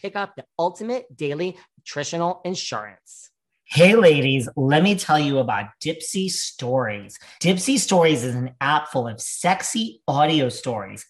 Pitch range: 125-175 Hz